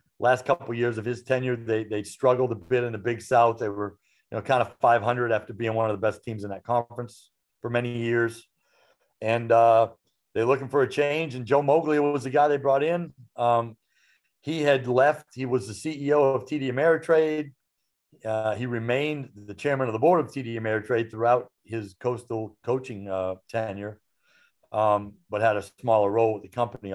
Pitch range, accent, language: 115-145 Hz, American, English